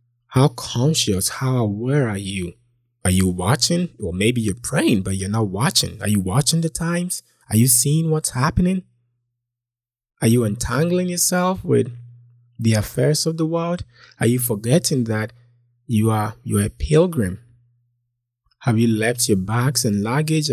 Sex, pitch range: male, 110-135 Hz